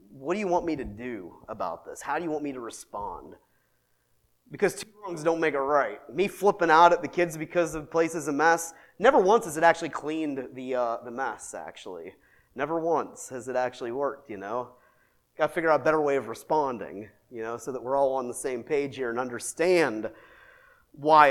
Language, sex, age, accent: English, male, 30-49, American